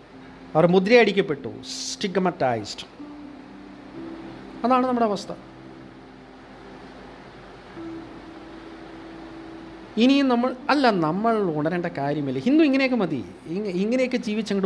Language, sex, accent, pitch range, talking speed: English, male, Indian, 125-190 Hz, 45 wpm